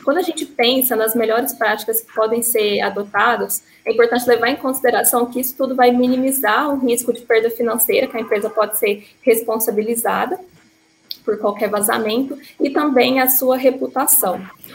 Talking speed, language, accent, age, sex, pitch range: 165 wpm, Portuguese, Brazilian, 10-29, female, 220-250 Hz